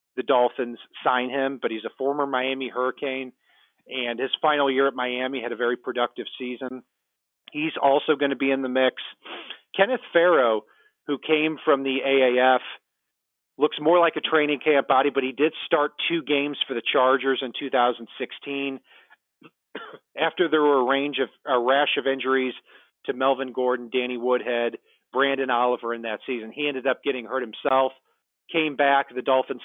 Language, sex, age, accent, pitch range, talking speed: English, male, 40-59, American, 125-150 Hz, 165 wpm